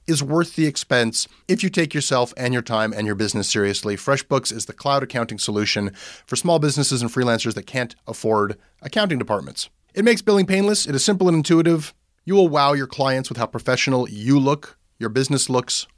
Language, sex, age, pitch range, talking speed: English, male, 30-49, 115-155 Hz, 200 wpm